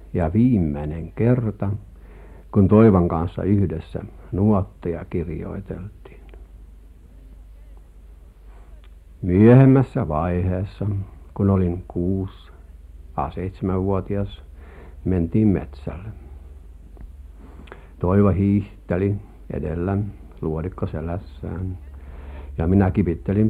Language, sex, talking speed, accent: Finnish, male, 65 wpm, native